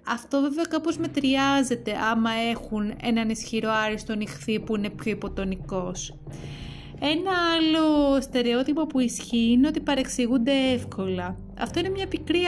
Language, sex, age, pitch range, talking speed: Greek, female, 20-39, 215-280 Hz, 130 wpm